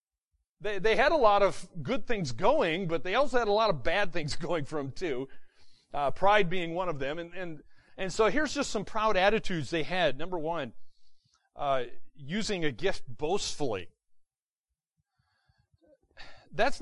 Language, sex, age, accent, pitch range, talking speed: English, male, 40-59, American, 130-210 Hz, 170 wpm